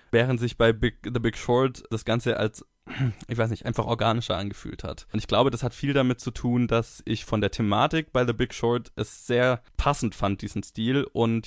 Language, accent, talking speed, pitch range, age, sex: German, German, 220 wpm, 105-125 Hz, 20-39, male